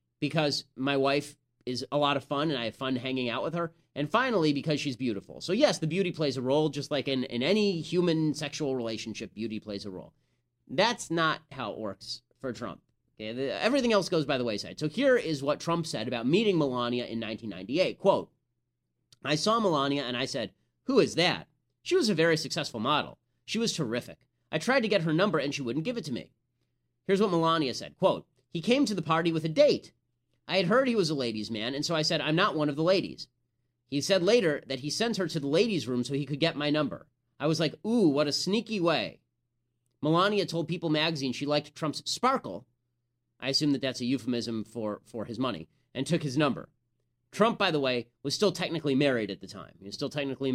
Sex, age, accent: male, 30-49, American